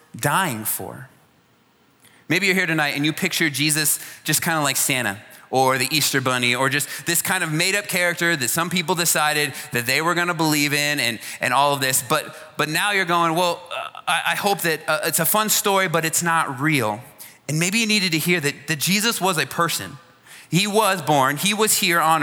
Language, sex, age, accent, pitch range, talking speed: English, male, 30-49, American, 140-175 Hz, 220 wpm